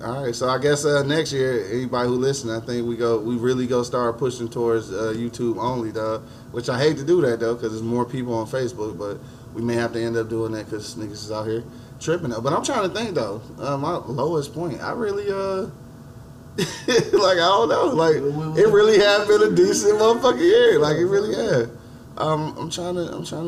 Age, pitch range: 20-39, 115-140 Hz